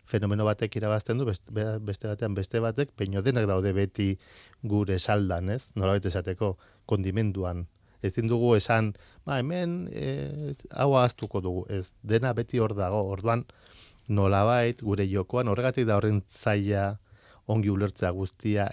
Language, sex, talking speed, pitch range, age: Spanish, male, 130 wpm, 100-115 Hz, 40-59